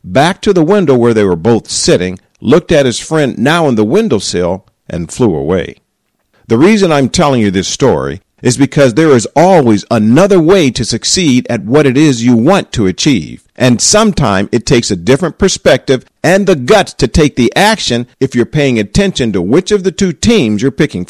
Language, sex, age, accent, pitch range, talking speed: English, male, 50-69, American, 115-175 Hz, 200 wpm